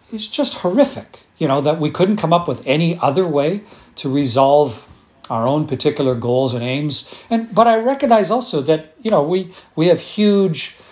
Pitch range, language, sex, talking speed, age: 125-165 Hz, English, male, 185 wpm, 40-59